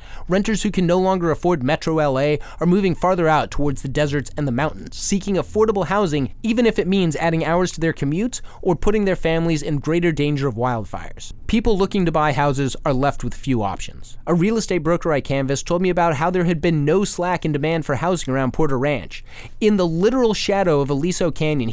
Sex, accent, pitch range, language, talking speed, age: male, American, 140-185 Hz, English, 215 wpm, 30-49